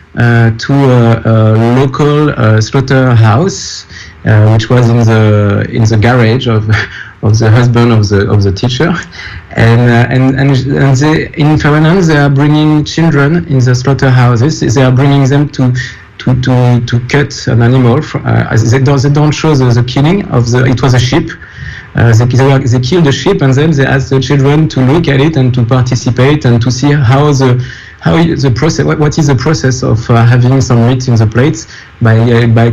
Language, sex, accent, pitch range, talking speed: English, male, French, 115-140 Hz, 200 wpm